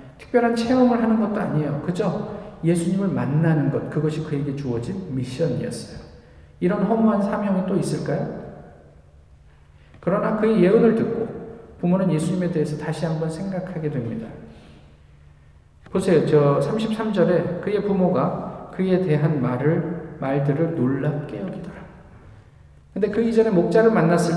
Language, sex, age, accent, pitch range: Korean, male, 50-69, native, 150-215 Hz